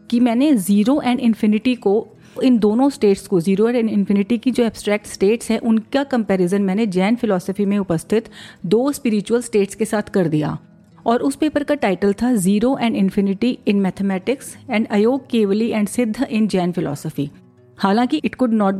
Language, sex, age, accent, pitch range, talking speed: Hindi, female, 40-59, native, 195-235 Hz, 180 wpm